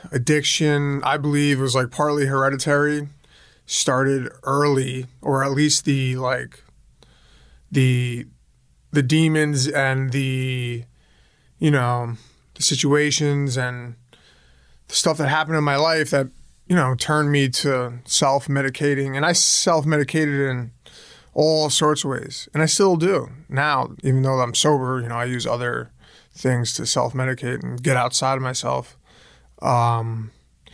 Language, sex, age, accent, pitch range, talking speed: English, male, 20-39, American, 125-150 Hz, 140 wpm